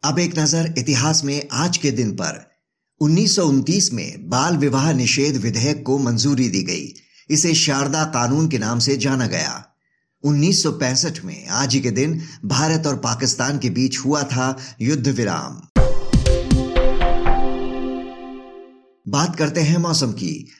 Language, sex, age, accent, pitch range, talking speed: Hindi, male, 50-69, native, 130-155 Hz, 135 wpm